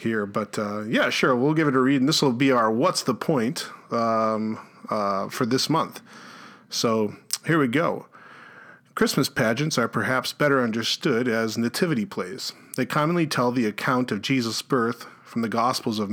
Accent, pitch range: American, 110-135 Hz